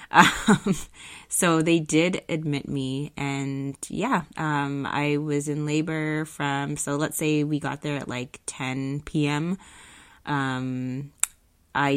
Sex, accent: female, American